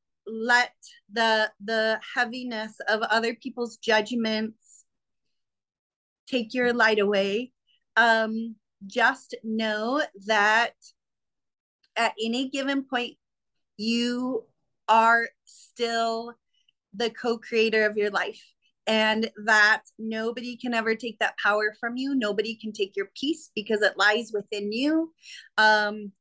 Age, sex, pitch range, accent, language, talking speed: 30-49, female, 210-240 Hz, American, English, 110 wpm